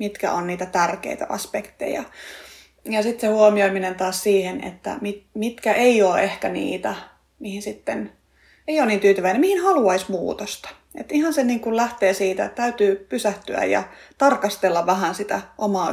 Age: 30-49